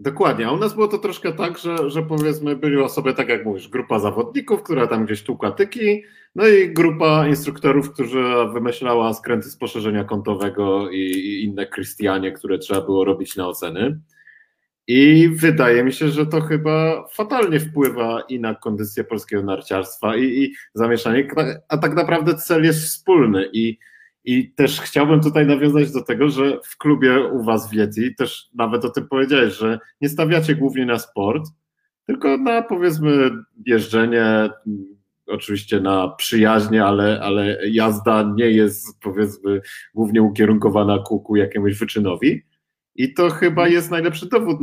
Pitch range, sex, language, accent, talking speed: 105-145 Hz, male, Polish, native, 155 wpm